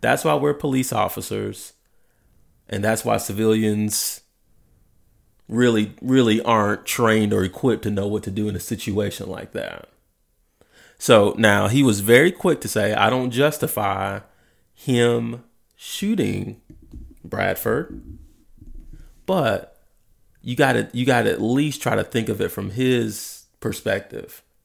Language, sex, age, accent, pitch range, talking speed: English, male, 30-49, American, 110-160 Hz, 135 wpm